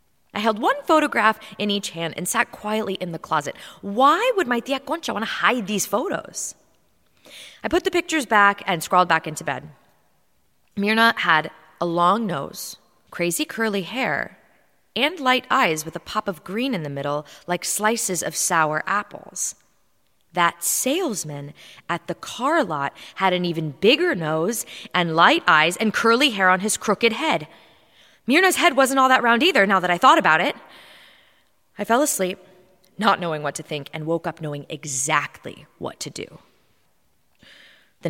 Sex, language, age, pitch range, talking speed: female, English, 20-39, 165-230 Hz, 170 wpm